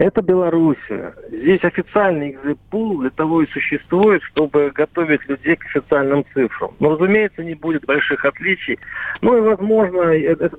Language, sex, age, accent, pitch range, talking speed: Russian, male, 40-59, native, 145-195 Hz, 140 wpm